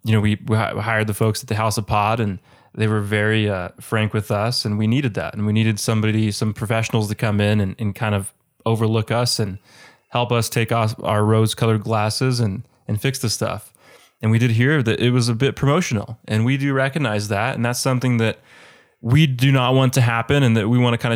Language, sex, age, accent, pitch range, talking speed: English, male, 20-39, American, 105-120 Hz, 240 wpm